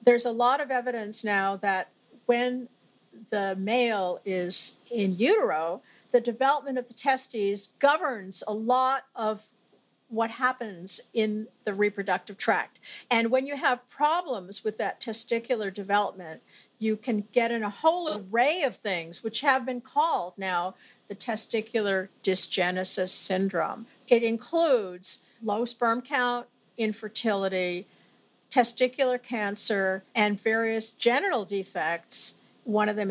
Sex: female